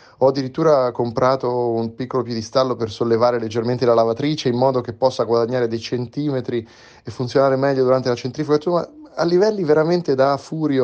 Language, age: Italian, 30-49